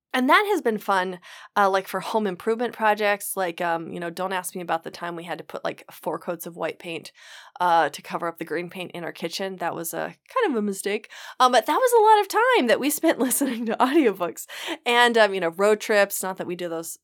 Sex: female